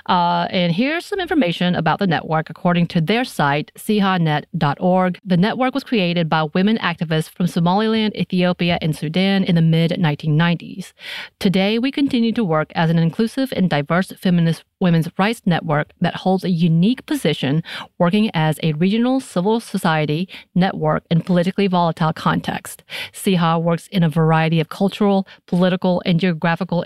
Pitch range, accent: 165-205 Hz, American